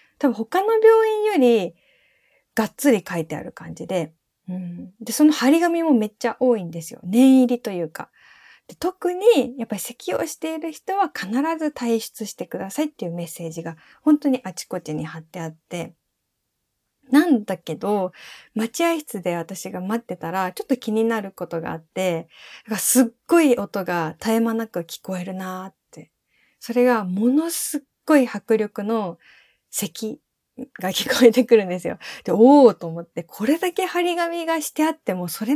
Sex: female